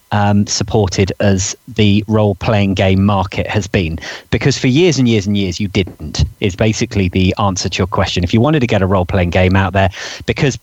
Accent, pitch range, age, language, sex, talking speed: British, 95-115 Hz, 40-59, English, male, 215 wpm